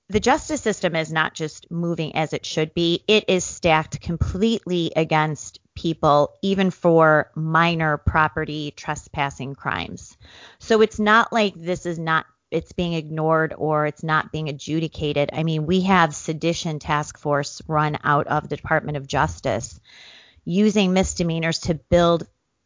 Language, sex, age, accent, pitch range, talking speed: English, female, 30-49, American, 150-185 Hz, 150 wpm